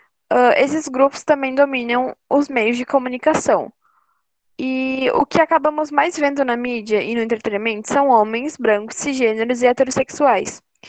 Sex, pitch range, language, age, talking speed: female, 235-285 Hz, Portuguese, 10-29, 140 wpm